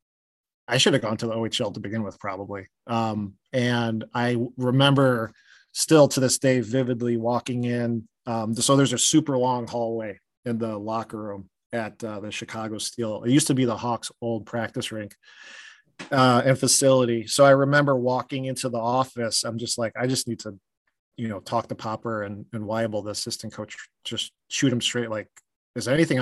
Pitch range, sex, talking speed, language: 110-130 Hz, male, 190 wpm, English